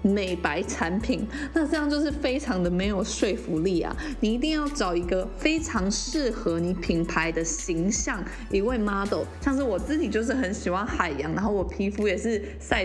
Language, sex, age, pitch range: Chinese, female, 20-39, 190-280 Hz